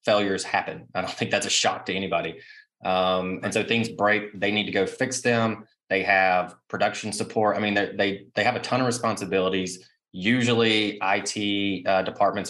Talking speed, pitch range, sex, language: 180 wpm, 95-115 Hz, male, English